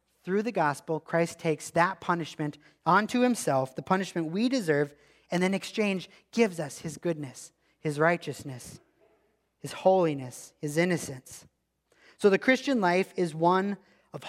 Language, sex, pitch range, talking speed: English, male, 145-200 Hz, 140 wpm